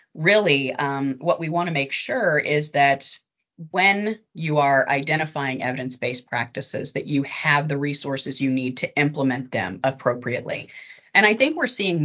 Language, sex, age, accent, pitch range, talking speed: English, female, 30-49, American, 135-165 Hz, 160 wpm